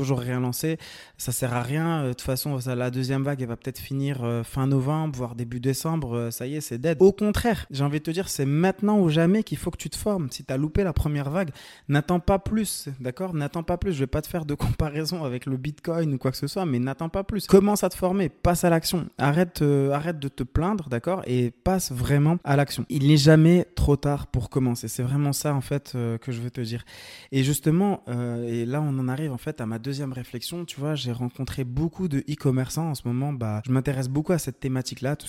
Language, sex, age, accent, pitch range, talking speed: French, male, 20-39, French, 125-155 Hz, 250 wpm